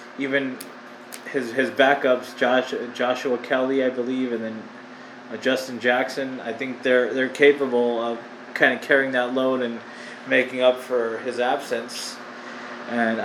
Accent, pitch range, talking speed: American, 120-130 Hz, 145 wpm